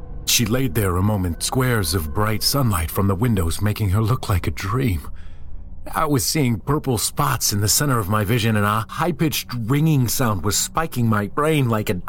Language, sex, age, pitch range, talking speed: English, male, 30-49, 100-145 Hz, 200 wpm